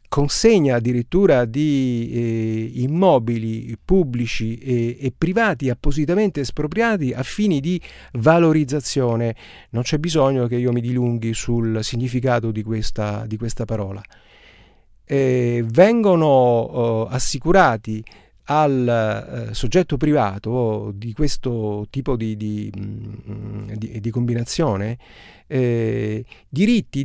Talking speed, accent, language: 100 wpm, native, Italian